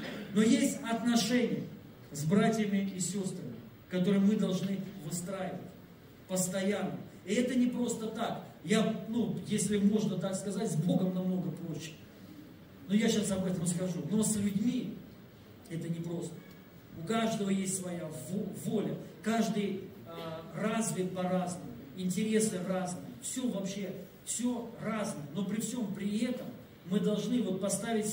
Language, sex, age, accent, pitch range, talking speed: Russian, male, 40-59, native, 185-220 Hz, 135 wpm